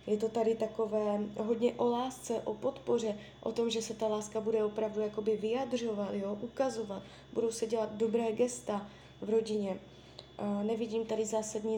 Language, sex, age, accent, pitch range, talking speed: Czech, female, 20-39, native, 205-225 Hz, 150 wpm